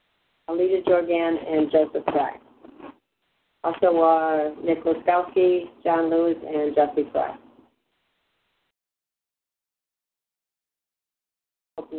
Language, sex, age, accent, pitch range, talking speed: English, female, 50-69, American, 155-180 Hz, 80 wpm